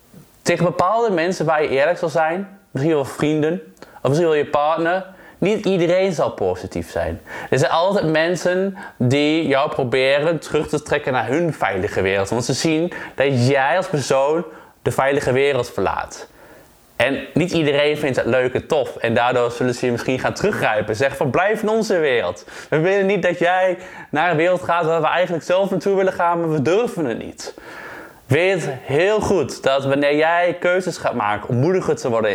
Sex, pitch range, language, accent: male, 140-180 Hz, Dutch, Dutch